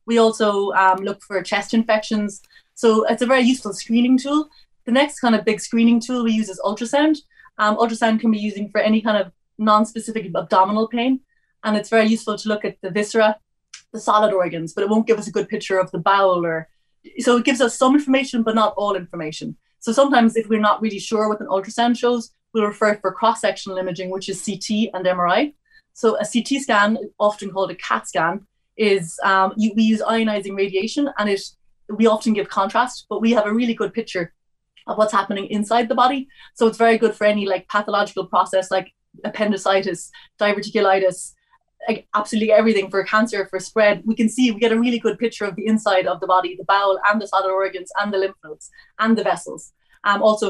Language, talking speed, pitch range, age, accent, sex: English, 210 wpm, 195-230 Hz, 30-49, Irish, female